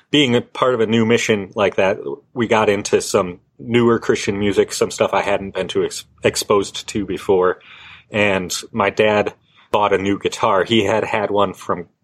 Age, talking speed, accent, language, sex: 30-49, 190 wpm, American, English, male